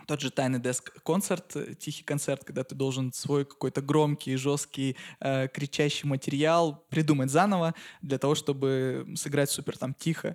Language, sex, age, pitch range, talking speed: Russian, male, 20-39, 140-160 Hz, 150 wpm